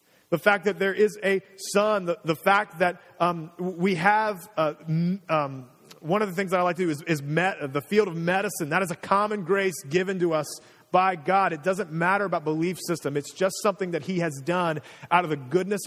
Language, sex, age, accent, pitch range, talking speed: English, male, 30-49, American, 130-175 Hz, 225 wpm